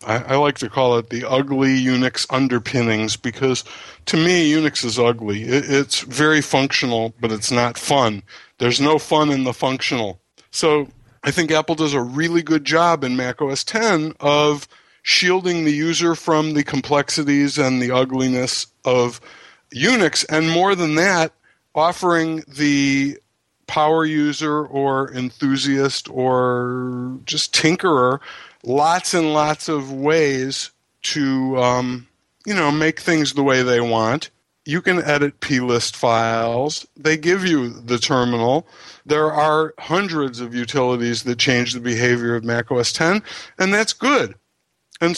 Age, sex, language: 50-69, male, English